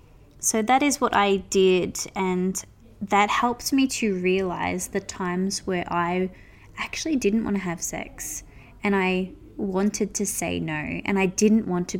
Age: 20-39